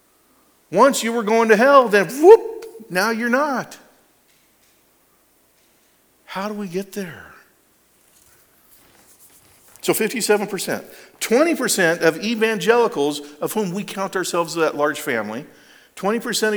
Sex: male